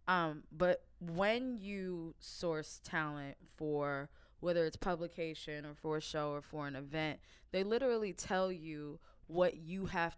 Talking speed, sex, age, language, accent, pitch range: 145 wpm, female, 20-39, English, American, 150-180 Hz